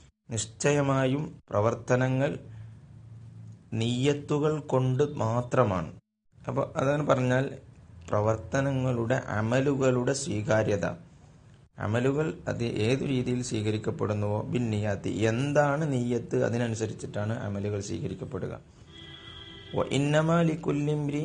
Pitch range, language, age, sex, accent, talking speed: 110-135 Hz, Malayalam, 30-49, male, native, 70 wpm